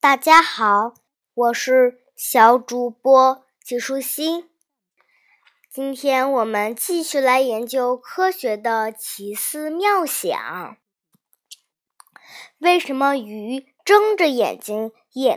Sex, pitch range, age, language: male, 240-315 Hz, 20-39, Chinese